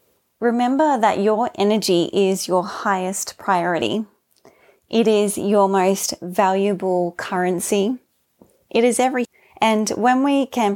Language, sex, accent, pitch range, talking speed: English, female, Australian, 195-235 Hz, 115 wpm